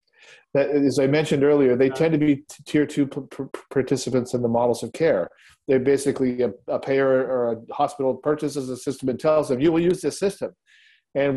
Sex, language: male, English